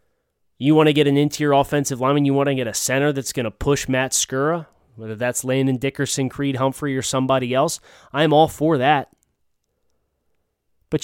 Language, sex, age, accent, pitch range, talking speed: English, male, 30-49, American, 120-150 Hz, 185 wpm